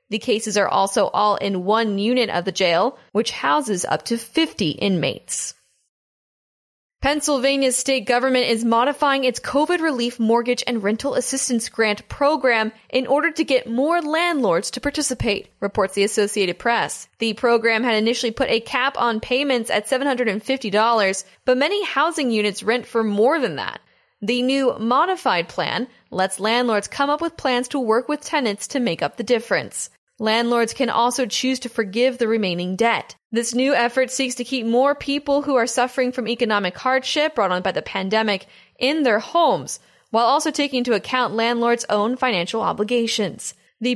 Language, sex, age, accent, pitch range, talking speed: English, female, 10-29, American, 220-270 Hz, 170 wpm